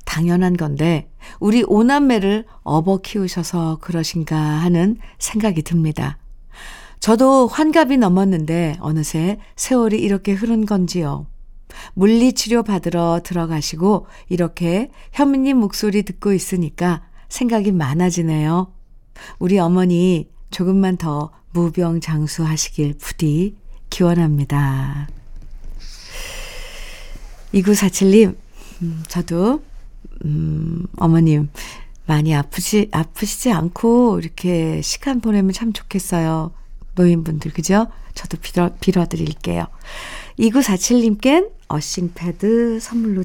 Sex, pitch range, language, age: female, 165-220 Hz, Korean, 50-69